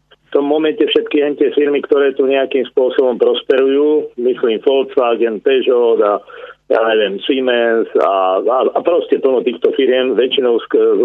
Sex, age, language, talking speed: male, 40-59, Slovak, 145 wpm